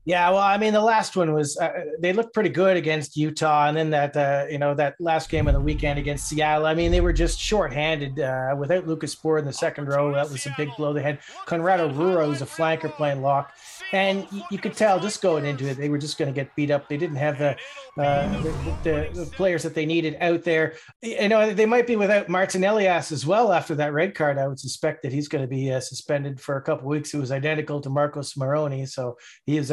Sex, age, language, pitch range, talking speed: male, 40-59, English, 145-175 Hz, 240 wpm